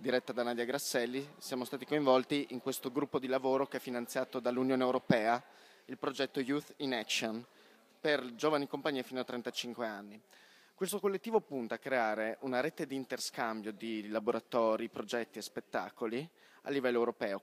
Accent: native